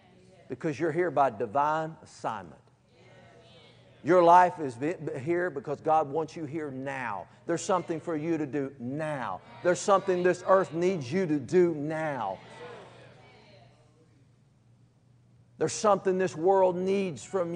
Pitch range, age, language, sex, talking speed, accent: 155-230 Hz, 50-69, English, male, 130 wpm, American